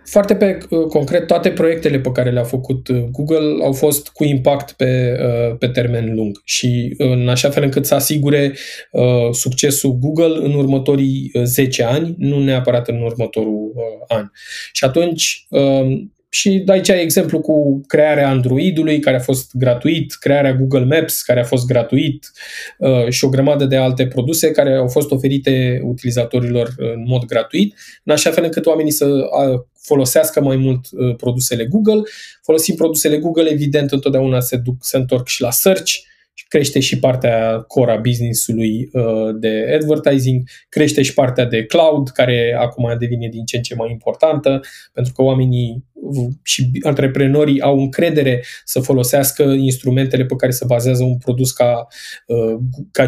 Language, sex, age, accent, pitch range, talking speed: Romanian, male, 20-39, native, 125-150 Hz, 150 wpm